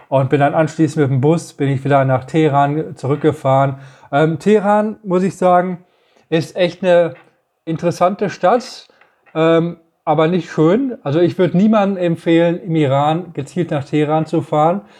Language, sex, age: German, male, 20-39